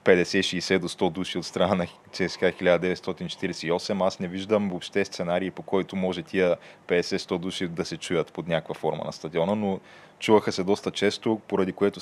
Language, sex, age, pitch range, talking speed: Bulgarian, male, 20-39, 85-95 Hz, 175 wpm